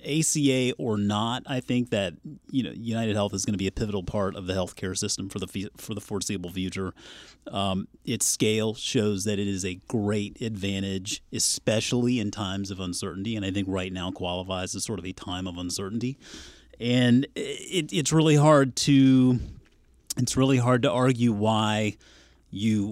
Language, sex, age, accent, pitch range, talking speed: English, male, 30-49, American, 95-130 Hz, 180 wpm